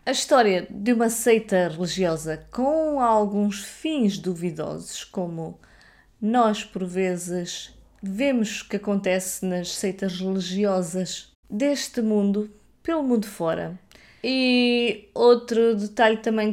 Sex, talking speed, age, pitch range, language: female, 110 wpm, 20-39, 175-205 Hz, Portuguese